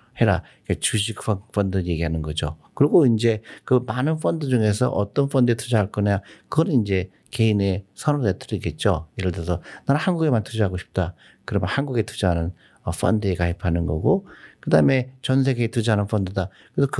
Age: 50-69